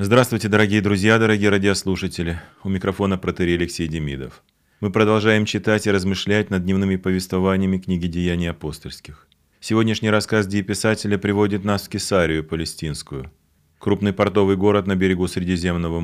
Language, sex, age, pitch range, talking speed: Russian, male, 30-49, 90-105 Hz, 130 wpm